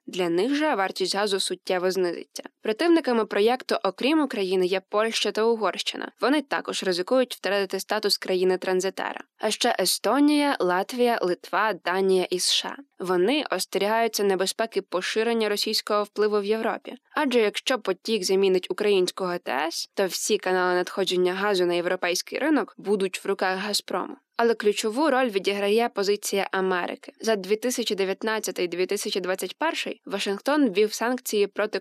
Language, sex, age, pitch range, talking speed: Ukrainian, female, 20-39, 190-230 Hz, 125 wpm